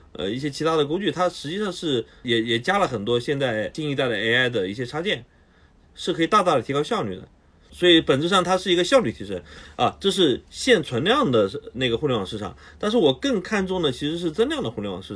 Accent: native